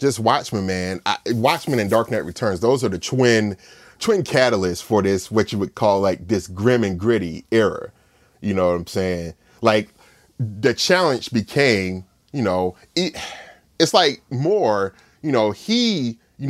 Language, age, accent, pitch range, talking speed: English, 30-49, American, 95-115 Hz, 165 wpm